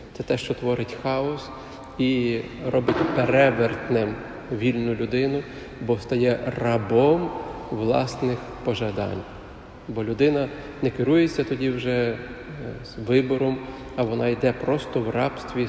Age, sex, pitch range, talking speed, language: 40-59, male, 120-140 Hz, 105 wpm, Ukrainian